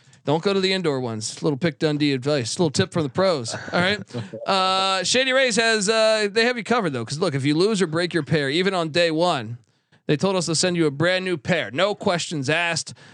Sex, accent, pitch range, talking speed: male, American, 135-185 Hz, 245 wpm